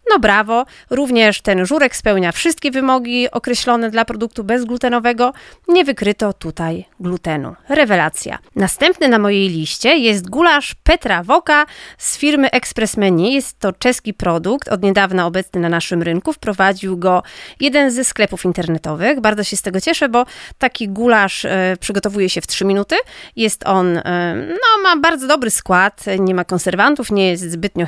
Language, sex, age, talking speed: Polish, female, 30-49, 155 wpm